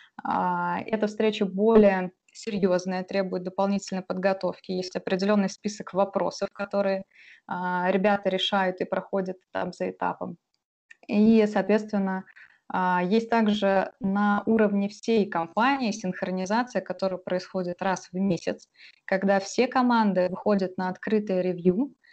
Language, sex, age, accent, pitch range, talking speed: Russian, female, 20-39, native, 185-215 Hz, 110 wpm